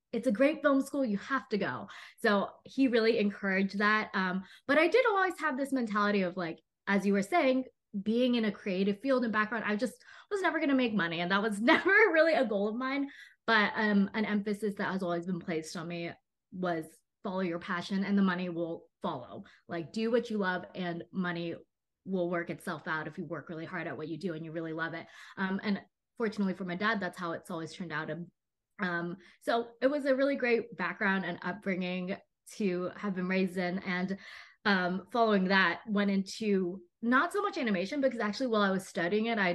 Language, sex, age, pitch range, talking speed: English, female, 20-39, 185-250 Hz, 215 wpm